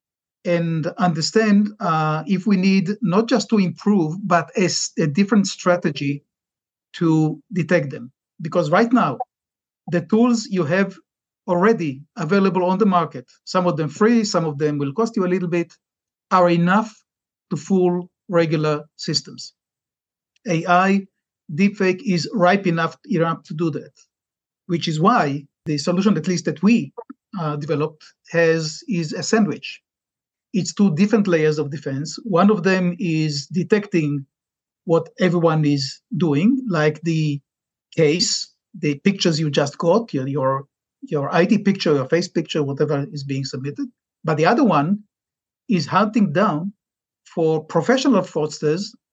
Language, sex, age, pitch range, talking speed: English, male, 50-69, 155-200 Hz, 145 wpm